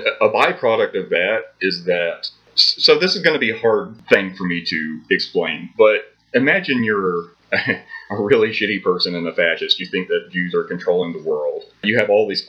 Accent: American